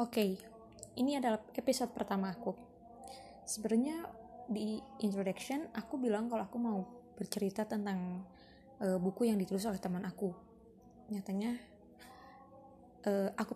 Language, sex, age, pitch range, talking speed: Indonesian, female, 20-39, 190-240 Hz, 120 wpm